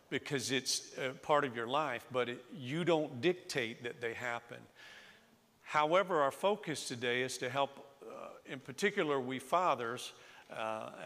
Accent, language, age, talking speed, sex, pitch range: American, English, 50-69, 140 wpm, male, 130-160 Hz